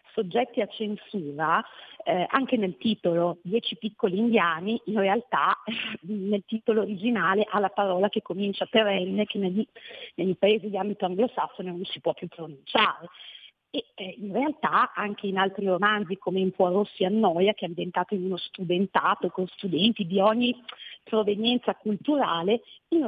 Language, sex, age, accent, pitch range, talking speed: Italian, female, 40-59, native, 190-245 Hz, 150 wpm